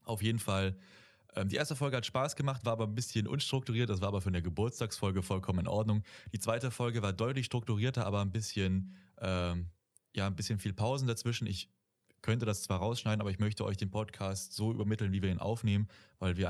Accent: German